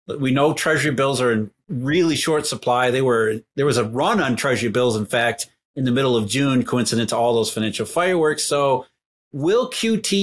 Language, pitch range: English, 125-155 Hz